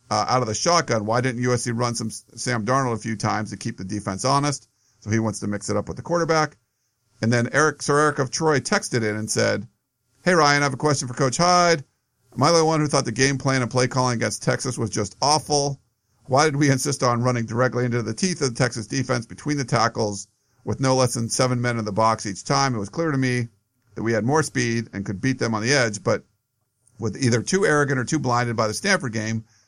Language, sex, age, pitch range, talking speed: English, male, 50-69, 110-135 Hz, 255 wpm